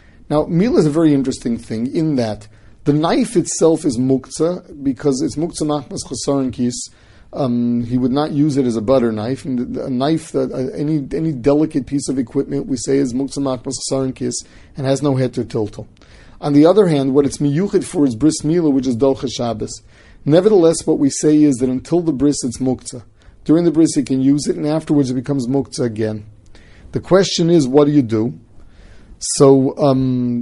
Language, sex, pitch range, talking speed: English, male, 130-155 Hz, 195 wpm